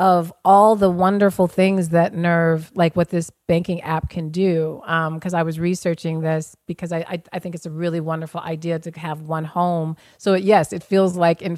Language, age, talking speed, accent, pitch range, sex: English, 40-59, 210 wpm, American, 170-220 Hz, female